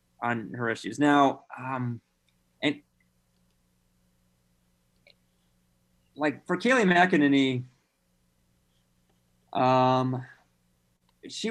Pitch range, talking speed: 95-130 Hz, 65 wpm